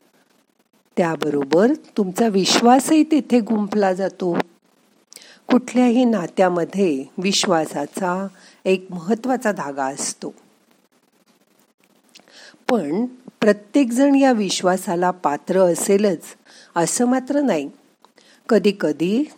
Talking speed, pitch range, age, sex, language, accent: 70 wpm, 175-235 Hz, 50-69, female, Marathi, native